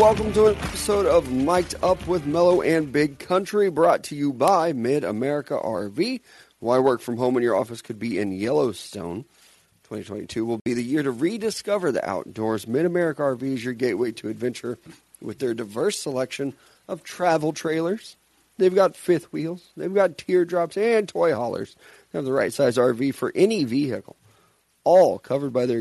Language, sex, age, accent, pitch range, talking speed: English, male, 40-59, American, 120-180 Hz, 175 wpm